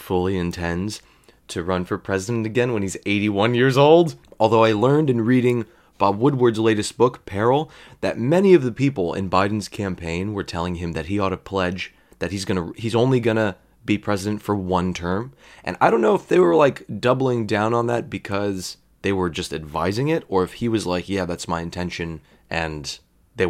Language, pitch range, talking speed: English, 90-125 Hz, 205 wpm